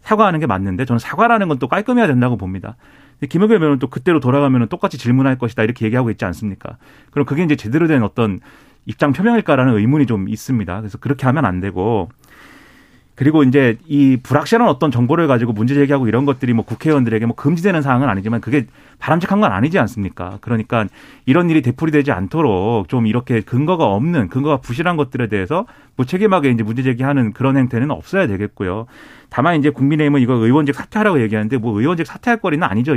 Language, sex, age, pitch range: Korean, male, 30-49, 115-155 Hz